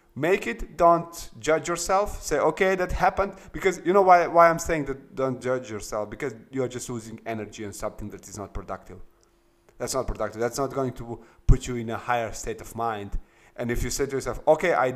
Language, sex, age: English, male, 30-49